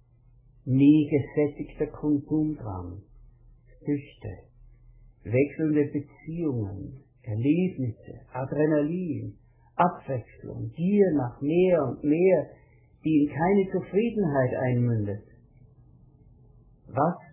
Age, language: 60-79, German